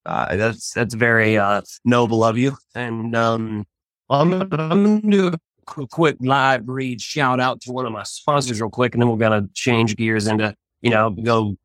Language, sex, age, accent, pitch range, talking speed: English, male, 30-49, American, 115-140 Hz, 190 wpm